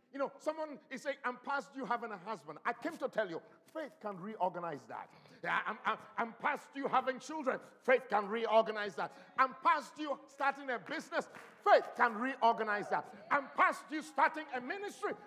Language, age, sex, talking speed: English, 50-69, male, 185 wpm